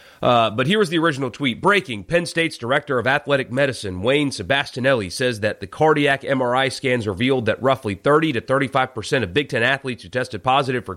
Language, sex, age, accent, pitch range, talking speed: English, male, 30-49, American, 105-135 Hz, 200 wpm